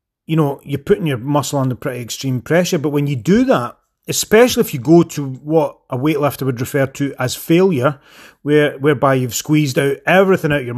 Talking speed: 205 wpm